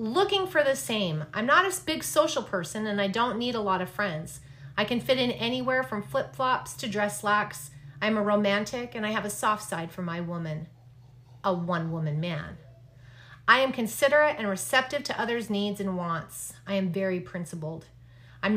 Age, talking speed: 30-49, 195 wpm